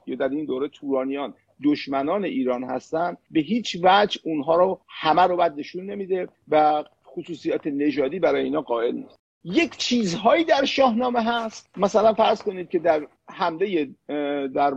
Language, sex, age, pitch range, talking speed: Persian, male, 50-69, 160-225 Hz, 150 wpm